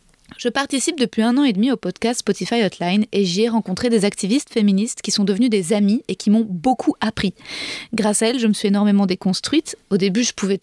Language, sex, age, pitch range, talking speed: French, female, 20-39, 200-240 Hz, 225 wpm